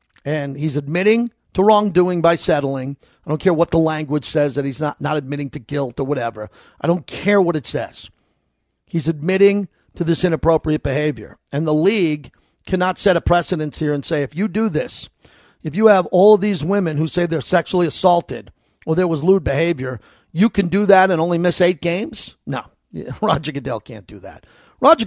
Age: 50-69